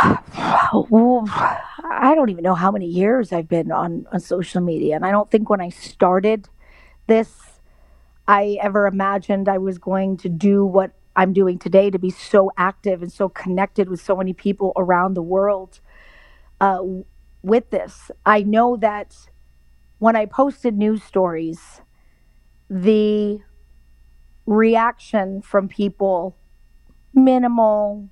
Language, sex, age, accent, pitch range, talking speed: English, female, 40-59, American, 185-230 Hz, 135 wpm